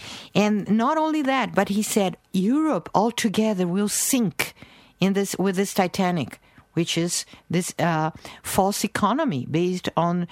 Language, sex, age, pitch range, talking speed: English, female, 50-69, 175-235 Hz, 140 wpm